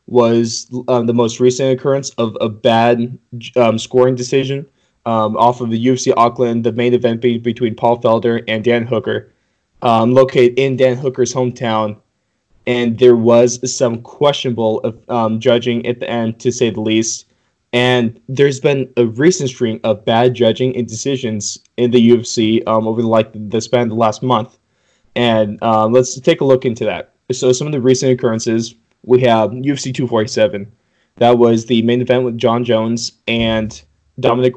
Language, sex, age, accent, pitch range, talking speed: English, male, 20-39, American, 115-125 Hz, 175 wpm